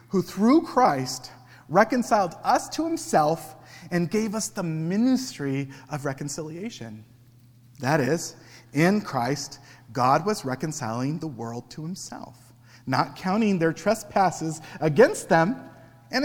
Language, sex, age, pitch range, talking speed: English, male, 40-59, 120-170 Hz, 120 wpm